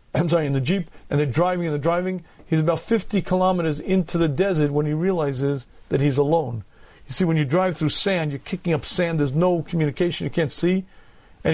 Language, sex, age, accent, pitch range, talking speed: English, male, 40-59, American, 150-185 Hz, 220 wpm